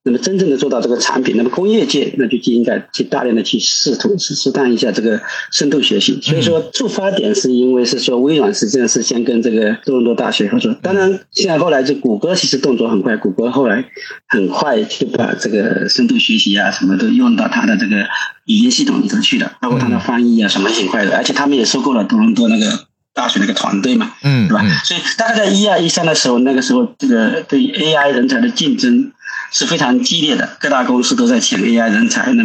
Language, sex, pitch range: Chinese, male, 220-255 Hz